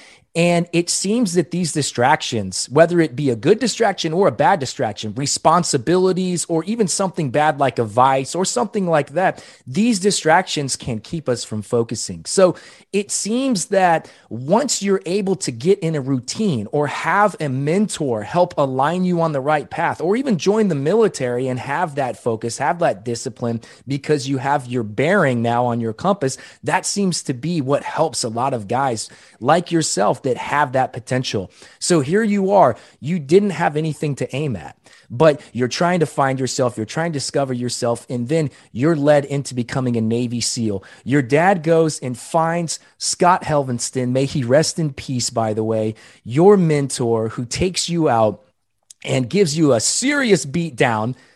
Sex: male